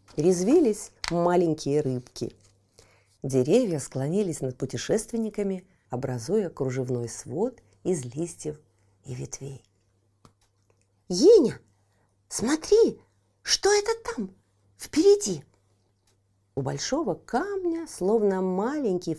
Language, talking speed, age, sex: Russian, 80 wpm, 40-59, female